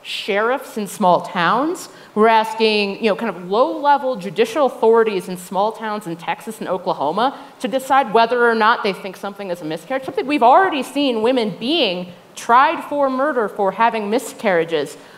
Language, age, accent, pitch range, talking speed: English, 30-49, American, 200-265 Hz, 170 wpm